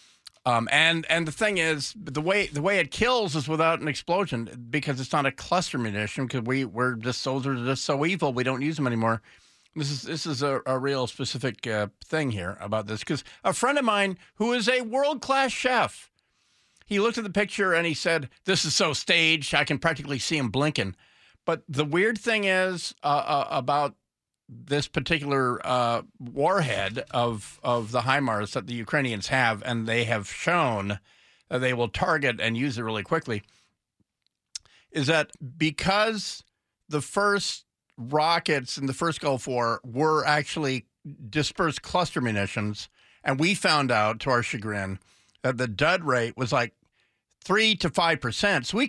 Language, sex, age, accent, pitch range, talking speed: English, male, 50-69, American, 120-165 Hz, 180 wpm